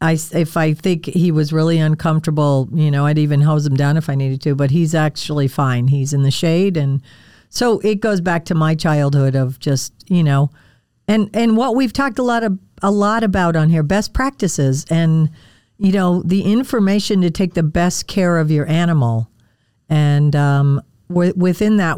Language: English